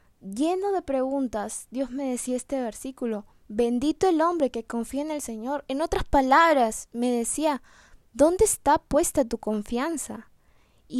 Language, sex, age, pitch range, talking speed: Spanish, female, 10-29, 240-310 Hz, 145 wpm